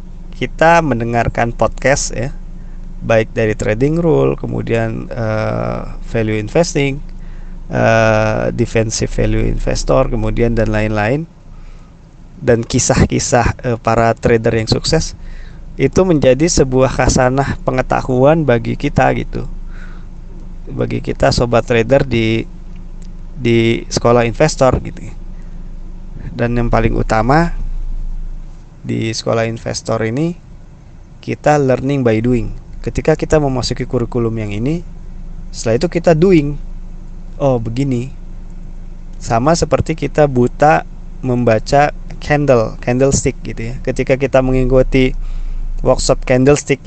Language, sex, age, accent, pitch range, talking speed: Indonesian, male, 20-39, native, 115-145 Hz, 105 wpm